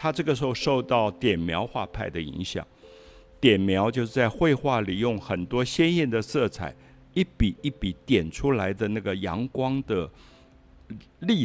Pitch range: 90-130 Hz